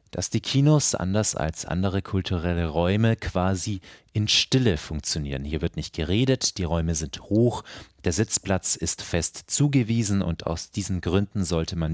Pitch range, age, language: 85-110 Hz, 30-49, German